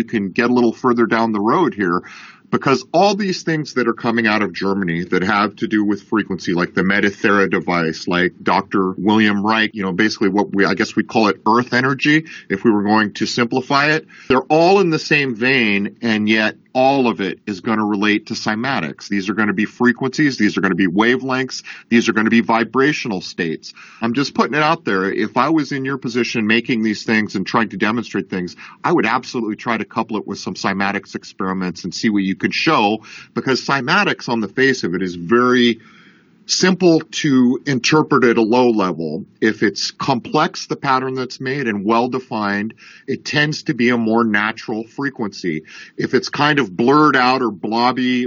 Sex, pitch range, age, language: male, 105-130 Hz, 40-59, English